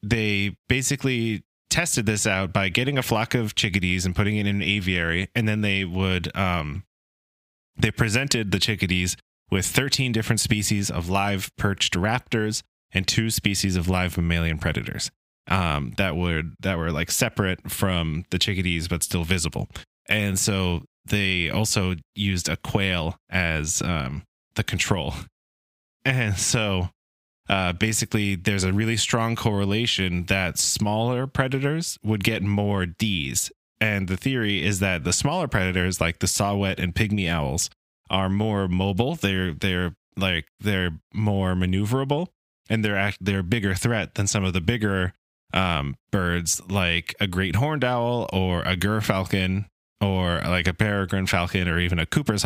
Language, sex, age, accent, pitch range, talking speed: English, male, 20-39, American, 90-110 Hz, 155 wpm